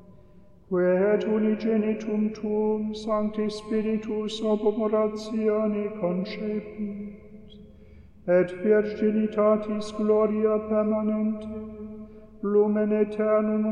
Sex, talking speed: male, 65 wpm